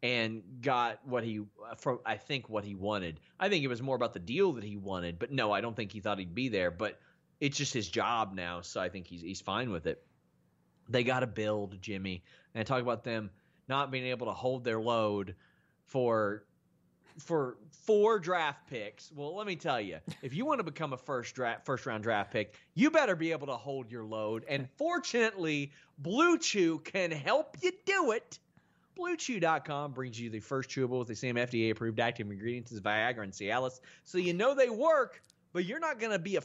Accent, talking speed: American, 210 wpm